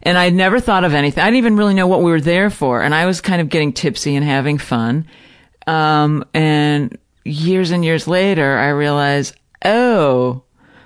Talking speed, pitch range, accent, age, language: 195 wpm, 130-180 Hz, American, 40-59, English